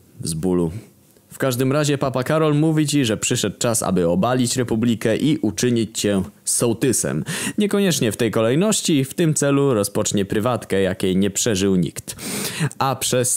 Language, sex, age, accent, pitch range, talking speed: Polish, male, 20-39, native, 100-135 Hz, 155 wpm